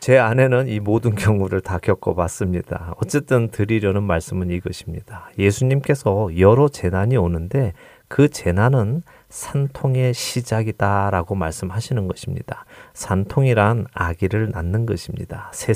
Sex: male